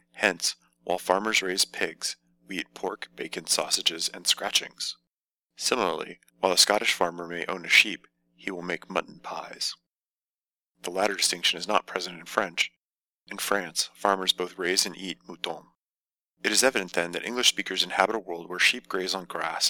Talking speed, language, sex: 175 wpm, English, male